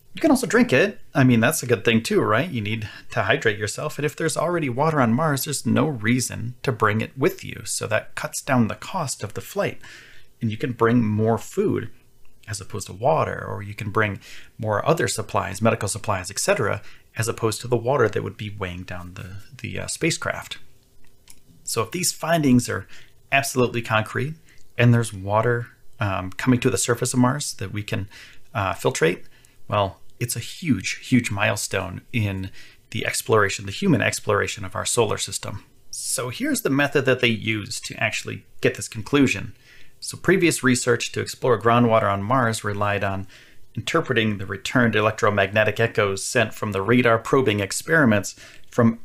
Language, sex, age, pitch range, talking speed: English, male, 30-49, 105-125 Hz, 180 wpm